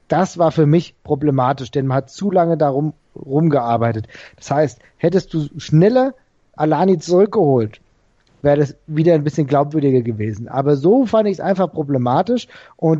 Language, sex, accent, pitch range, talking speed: German, male, German, 145-180 Hz, 155 wpm